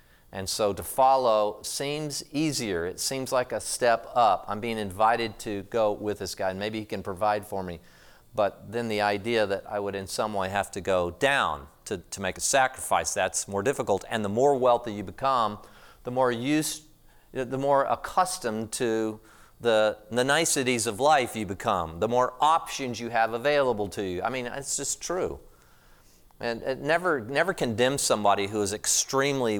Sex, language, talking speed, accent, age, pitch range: male, English, 180 wpm, American, 40-59, 100-130 Hz